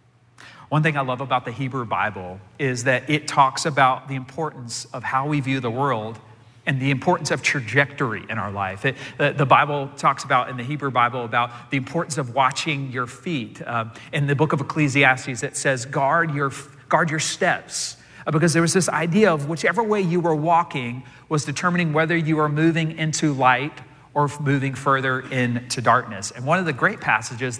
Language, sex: English, male